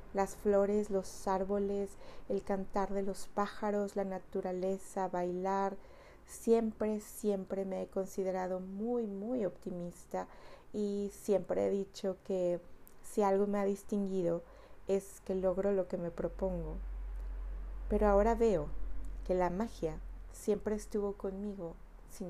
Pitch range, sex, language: 175-200 Hz, female, Spanish